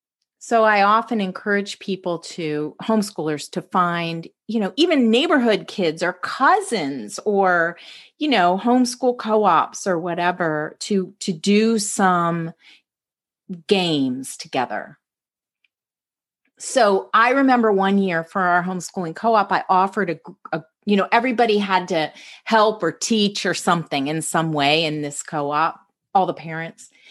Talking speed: 135 wpm